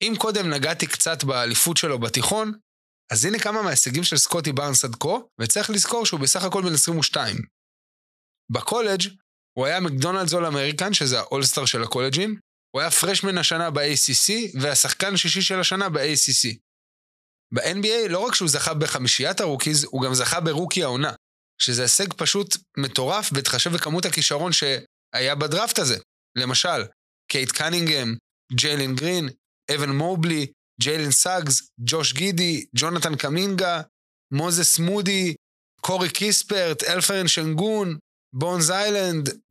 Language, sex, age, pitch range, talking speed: Hebrew, male, 20-39, 130-185 Hz, 130 wpm